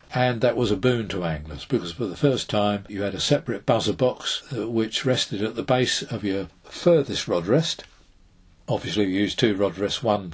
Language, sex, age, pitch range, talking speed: English, male, 50-69, 100-125 Hz, 205 wpm